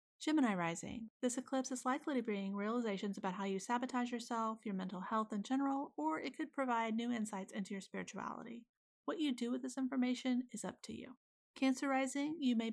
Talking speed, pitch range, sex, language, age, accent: 200 wpm, 205-255 Hz, female, English, 40-59, American